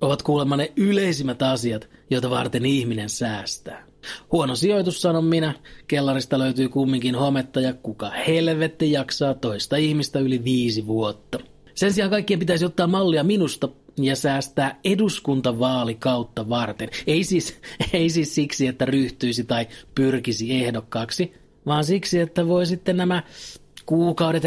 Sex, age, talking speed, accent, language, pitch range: male, 30-49, 135 wpm, native, Finnish, 125-155 Hz